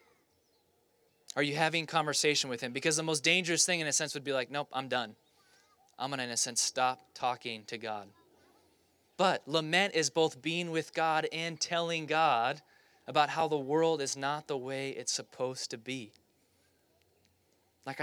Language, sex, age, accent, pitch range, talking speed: English, male, 20-39, American, 130-160 Hz, 175 wpm